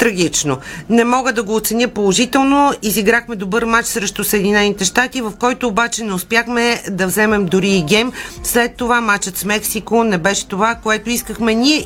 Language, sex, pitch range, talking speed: Bulgarian, female, 205-240 Hz, 170 wpm